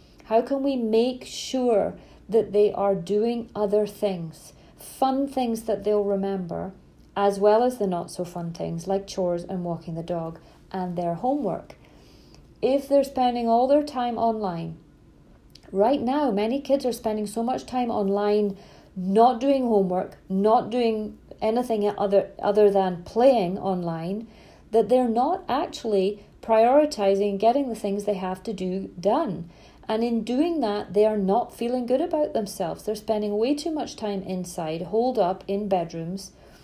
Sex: female